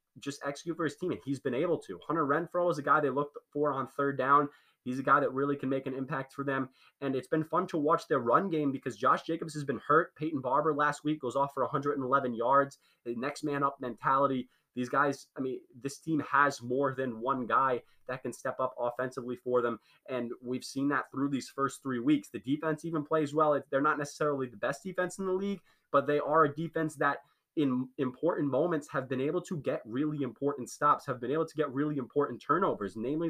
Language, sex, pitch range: English, male, 130-155 Hz